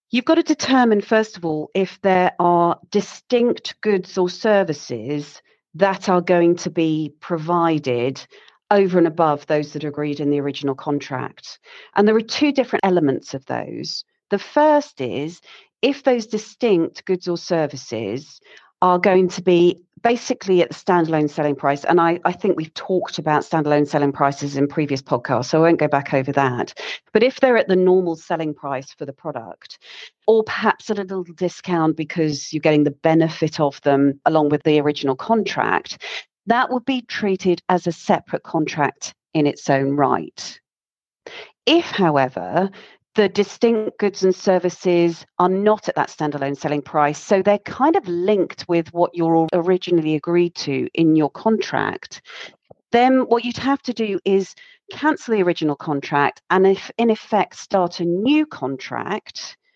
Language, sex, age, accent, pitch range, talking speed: English, female, 40-59, British, 150-205 Hz, 165 wpm